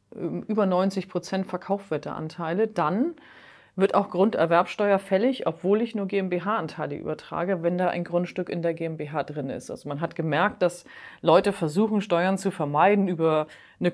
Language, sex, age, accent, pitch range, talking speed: German, female, 30-49, German, 160-190 Hz, 145 wpm